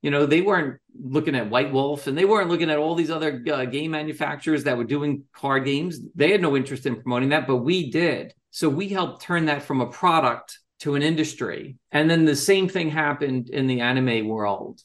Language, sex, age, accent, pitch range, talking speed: English, male, 40-59, American, 125-155 Hz, 220 wpm